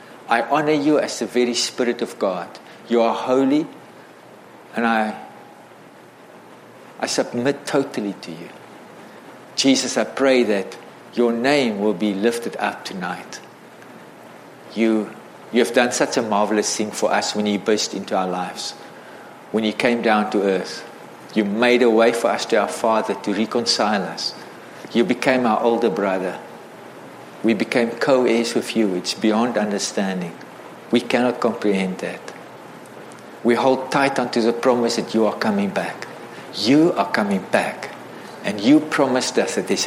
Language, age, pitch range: English, 50-69, 105-130 Hz